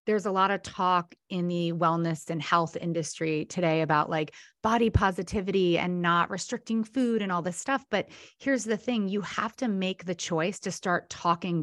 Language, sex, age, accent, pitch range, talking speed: English, female, 30-49, American, 165-205 Hz, 190 wpm